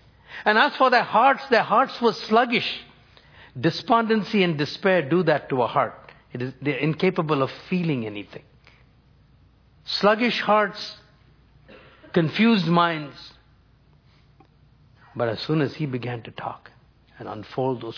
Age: 60-79